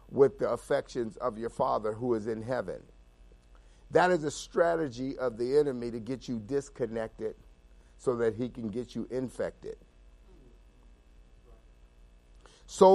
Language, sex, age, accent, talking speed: English, male, 50-69, American, 135 wpm